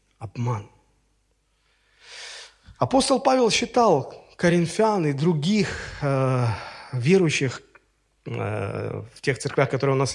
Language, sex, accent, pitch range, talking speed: Russian, male, native, 125-190 Hz, 100 wpm